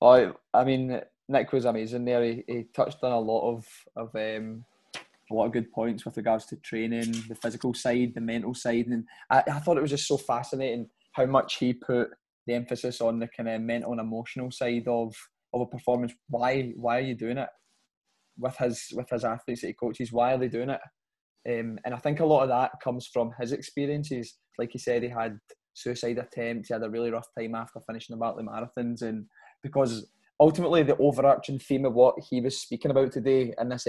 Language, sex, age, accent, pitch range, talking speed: English, male, 20-39, British, 115-125 Hz, 215 wpm